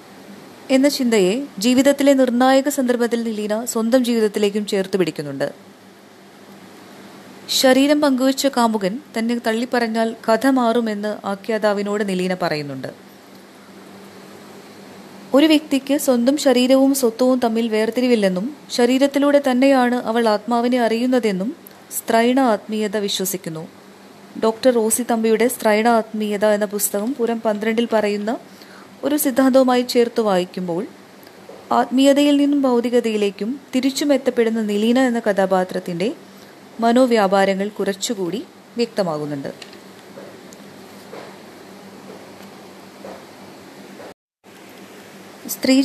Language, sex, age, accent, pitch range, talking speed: Malayalam, female, 20-39, native, 210-255 Hz, 75 wpm